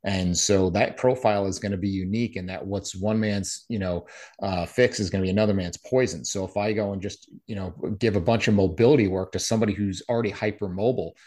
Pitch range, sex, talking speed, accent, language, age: 95-110 Hz, male, 235 wpm, American, English, 30-49